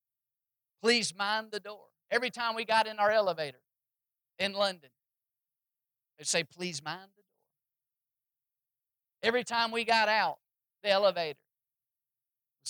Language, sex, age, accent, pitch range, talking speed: English, male, 50-69, American, 190-270 Hz, 130 wpm